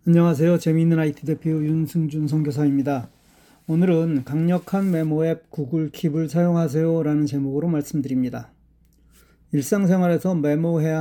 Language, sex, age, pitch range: Korean, male, 40-59, 150-170 Hz